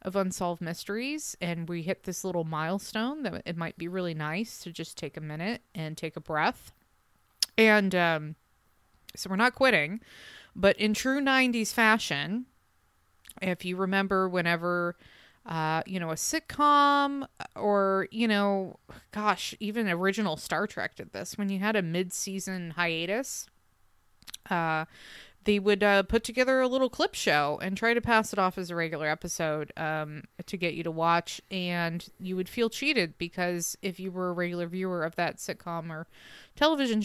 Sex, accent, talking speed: female, American, 165 wpm